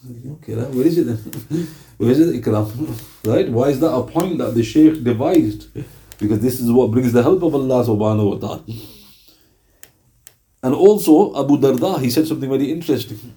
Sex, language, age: male, English, 50-69